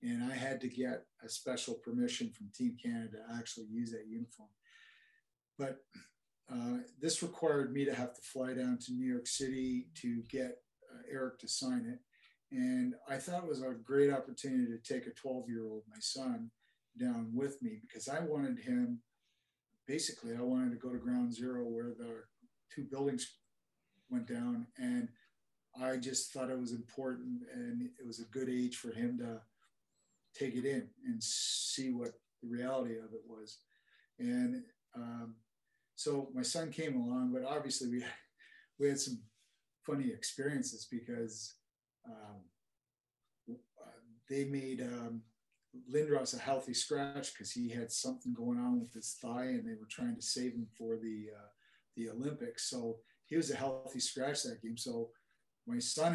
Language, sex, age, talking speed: English, male, 40-59, 165 wpm